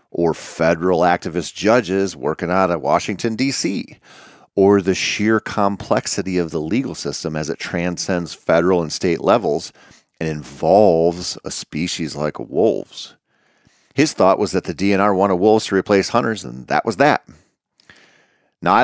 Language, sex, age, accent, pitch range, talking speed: English, male, 40-59, American, 80-105 Hz, 150 wpm